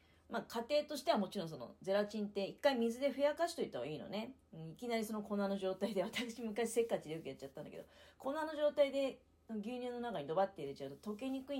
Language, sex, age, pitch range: Japanese, female, 40-59, 160-270 Hz